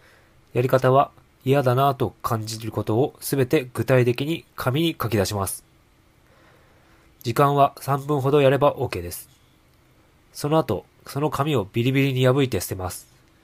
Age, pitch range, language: 20-39, 115-145 Hz, Japanese